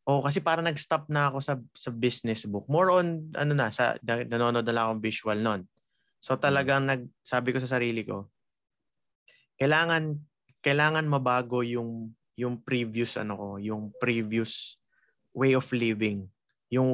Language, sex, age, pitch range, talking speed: Filipino, male, 20-39, 110-135 Hz, 155 wpm